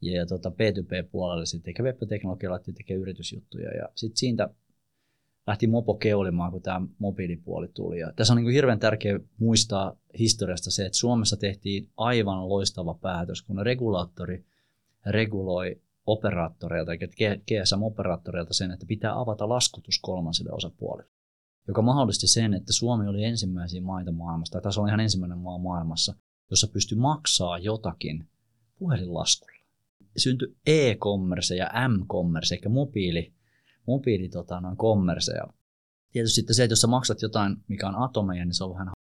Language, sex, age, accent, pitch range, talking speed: Finnish, male, 30-49, native, 90-115 Hz, 135 wpm